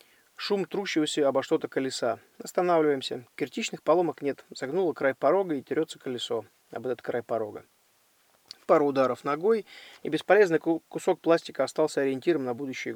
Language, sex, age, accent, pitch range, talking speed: Russian, male, 20-39, native, 140-175 Hz, 140 wpm